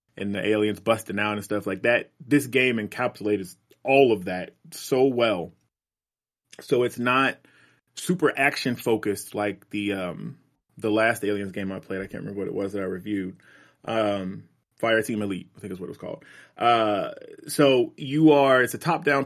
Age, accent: 30-49, American